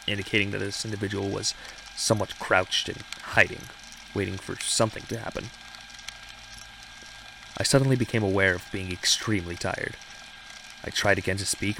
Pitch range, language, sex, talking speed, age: 95-110 Hz, English, male, 135 wpm, 30-49